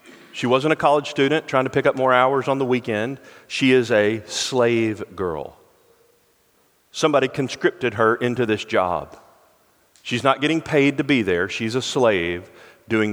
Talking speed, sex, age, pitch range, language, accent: 165 wpm, male, 40-59, 125-155 Hz, English, American